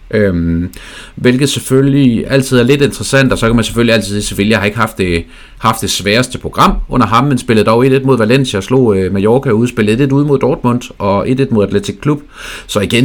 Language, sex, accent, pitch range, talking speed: Danish, male, native, 95-125 Hz, 215 wpm